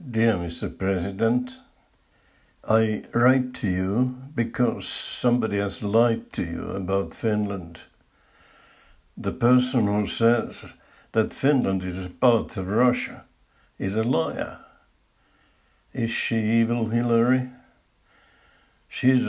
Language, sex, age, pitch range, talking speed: Finnish, male, 60-79, 95-120 Hz, 105 wpm